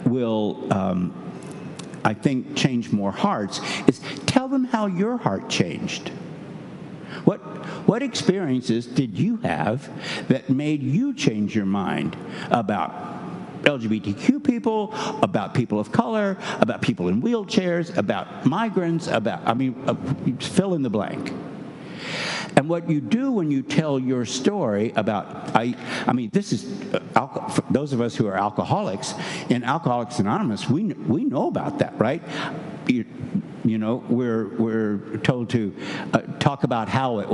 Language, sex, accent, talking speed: English, male, American, 140 wpm